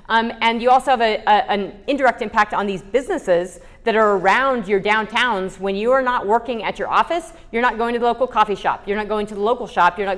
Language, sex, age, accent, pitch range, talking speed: English, female, 30-49, American, 190-230 Hz, 240 wpm